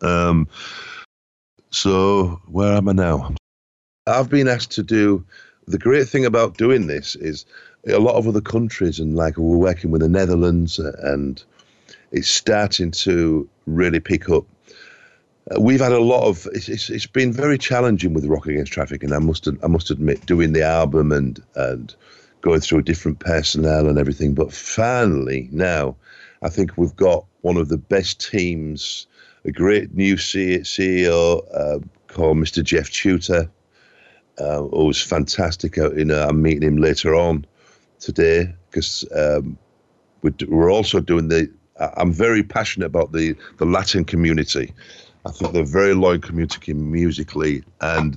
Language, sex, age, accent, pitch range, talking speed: English, male, 50-69, British, 75-95 Hz, 155 wpm